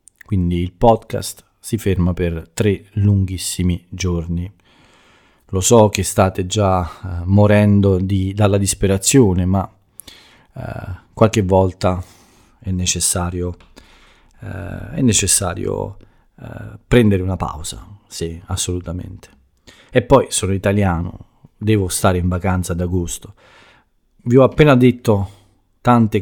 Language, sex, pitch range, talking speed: Italian, male, 90-105 Hz, 100 wpm